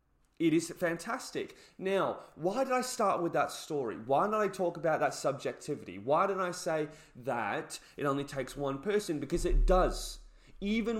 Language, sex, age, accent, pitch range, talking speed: English, male, 20-39, British, 105-170 Hz, 175 wpm